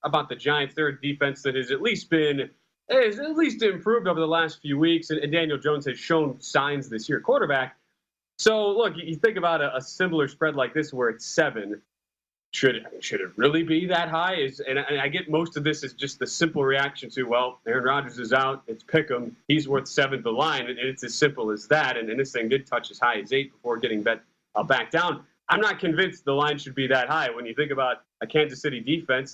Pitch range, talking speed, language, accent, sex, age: 130-160 Hz, 235 wpm, English, American, male, 30-49